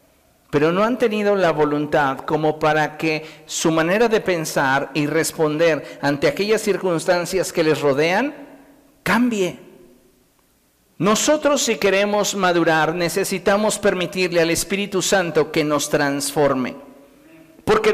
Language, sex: Spanish, male